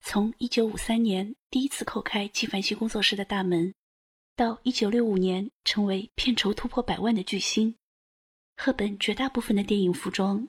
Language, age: Chinese, 20-39